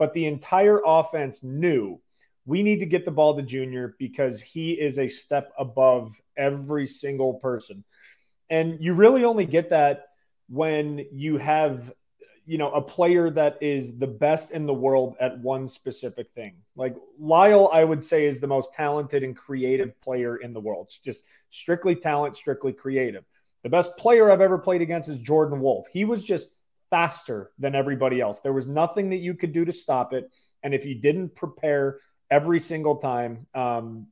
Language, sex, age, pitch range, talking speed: English, male, 30-49, 135-170 Hz, 180 wpm